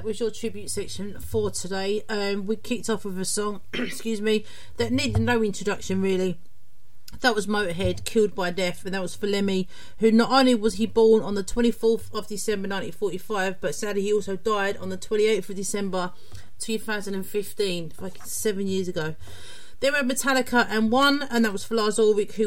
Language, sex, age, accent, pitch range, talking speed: English, female, 40-59, British, 190-235 Hz, 185 wpm